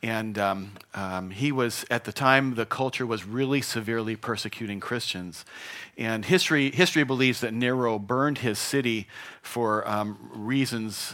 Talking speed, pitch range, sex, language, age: 145 wpm, 110-140 Hz, male, English, 40-59